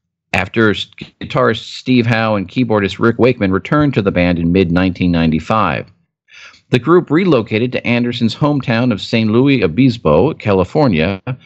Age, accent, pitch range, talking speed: 50-69, American, 95-125 Hz, 130 wpm